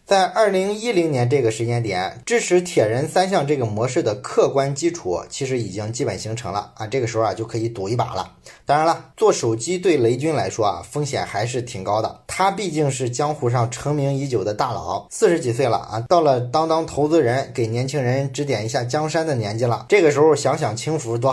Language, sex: Chinese, male